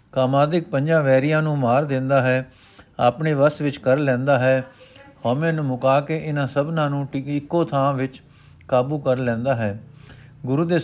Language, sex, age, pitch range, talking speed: Punjabi, male, 50-69, 130-155 Hz, 160 wpm